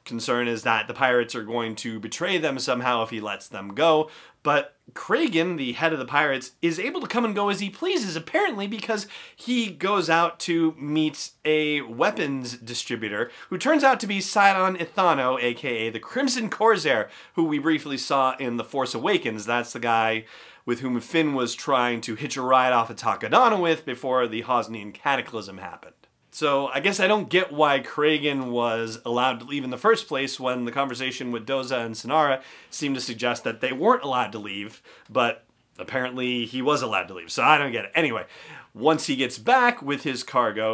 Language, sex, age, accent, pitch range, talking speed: English, male, 30-49, American, 120-165 Hz, 200 wpm